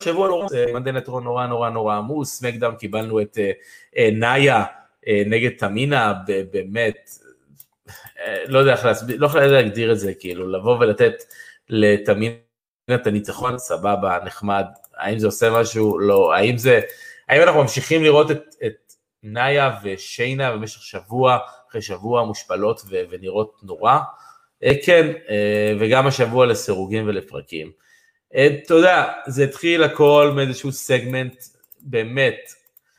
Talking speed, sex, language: 125 wpm, male, Hebrew